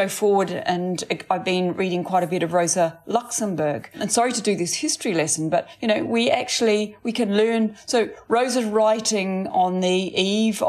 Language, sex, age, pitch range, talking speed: English, female, 40-59, 175-220 Hz, 180 wpm